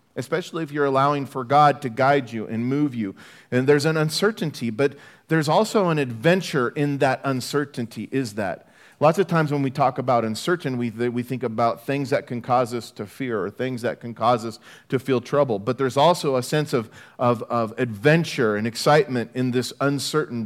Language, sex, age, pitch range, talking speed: English, male, 40-59, 125-150 Hz, 200 wpm